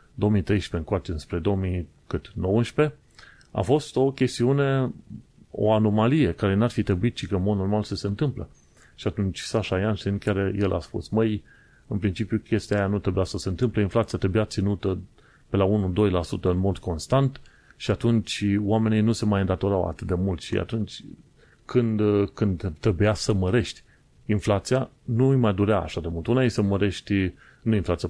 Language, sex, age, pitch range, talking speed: Romanian, male, 30-49, 95-110 Hz, 175 wpm